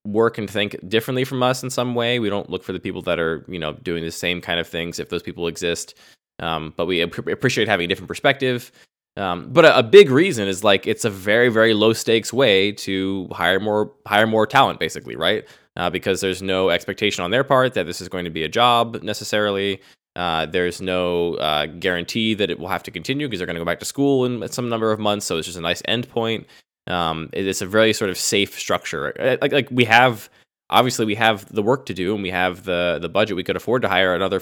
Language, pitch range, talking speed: English, 85-115 Hz, 240 wpm